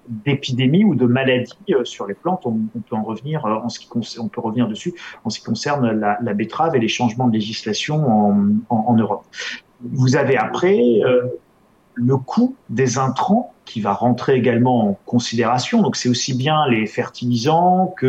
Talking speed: 195 wpm